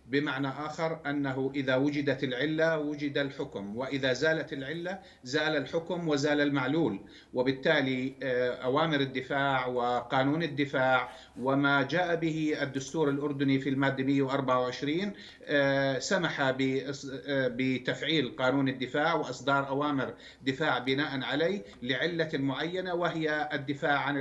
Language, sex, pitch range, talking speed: Arabic, male, 130-150 Hz, 105 wpm